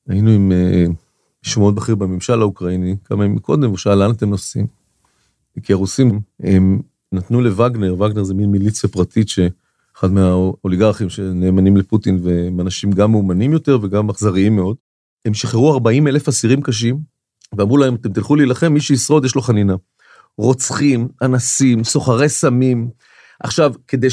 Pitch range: 110-180 Hz